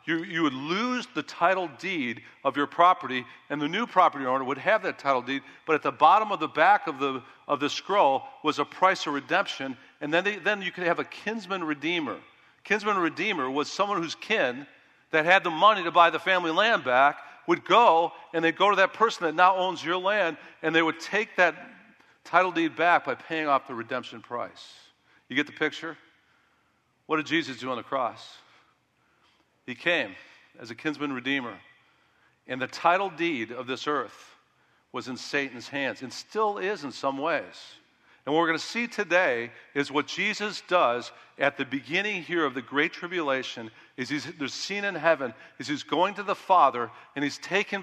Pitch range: 140-190 Hz